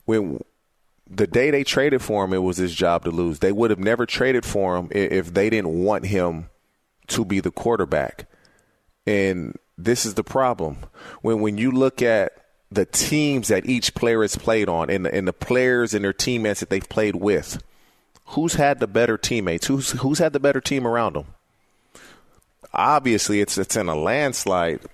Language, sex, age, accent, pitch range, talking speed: English, male, 30-49, American, 100-135 Hz, 190 wpm